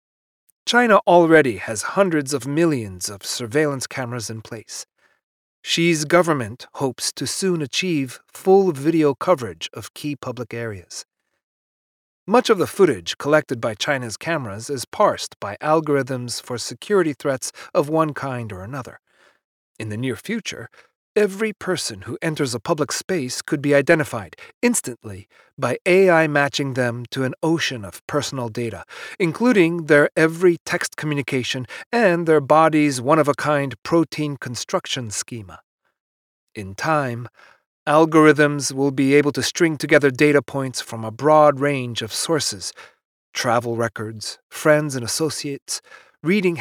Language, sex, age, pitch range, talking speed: English, male, 40-59, 120-160 Hz, 135 wpm